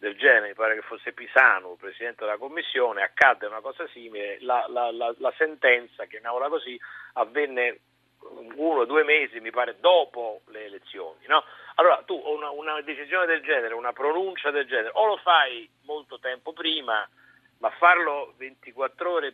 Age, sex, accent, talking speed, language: 50-69, male, native, 170 wpm, Italian